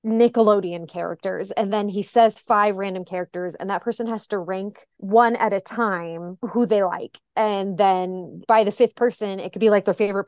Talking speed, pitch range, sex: 200 wpm, 180-230 Hz, female